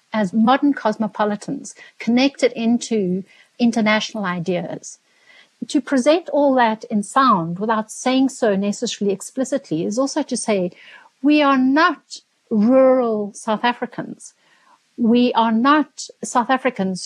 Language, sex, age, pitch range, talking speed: English, female, 60-79, 205-260 Hz, 115 wpm